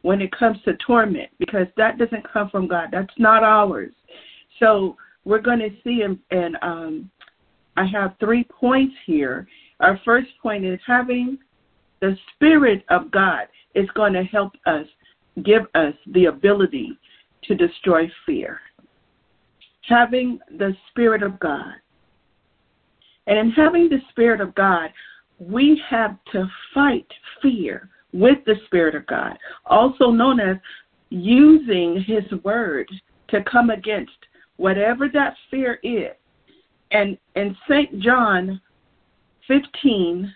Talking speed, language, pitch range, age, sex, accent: 130 wpm, English, 190-255 Hz, 50-69, female, American